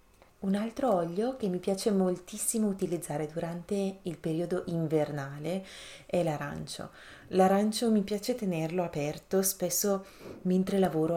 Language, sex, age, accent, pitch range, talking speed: Italian, female, 30-49, native, 155-190 Hz, 120 wpm